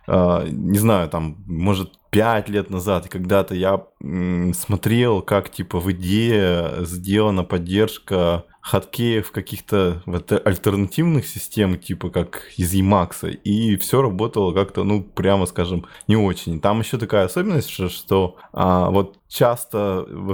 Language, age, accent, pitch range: Russian, 20-39, native, 90-105 Hz